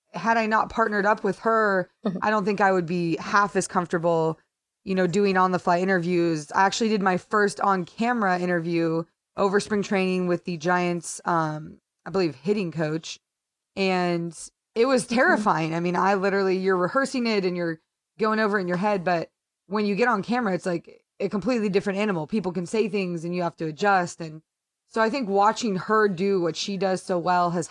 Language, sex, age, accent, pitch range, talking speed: English, female, 20-39, American, 170-215 Hz, 205 wpm